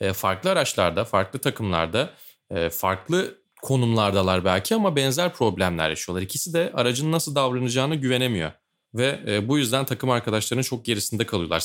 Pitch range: 95-130 Hz